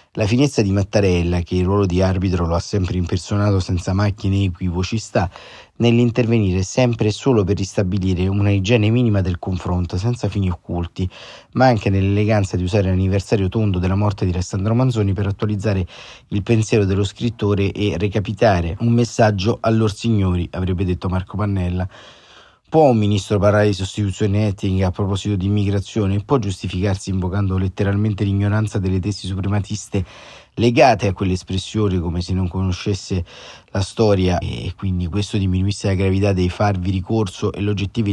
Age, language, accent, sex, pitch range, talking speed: 30-49, Italian, native, male, 95-110 Hz, 160 wpm